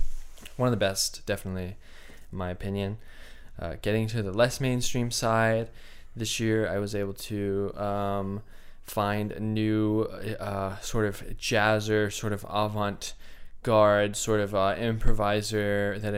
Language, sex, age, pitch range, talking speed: English, male, 20-39, 95-110 Hz, 135 wpm